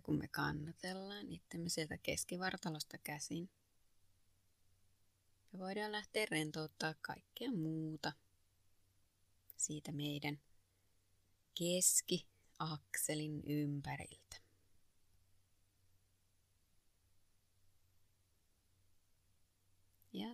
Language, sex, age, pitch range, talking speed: Finnish, female, 30-49, 95-155 Hz, 55 wpm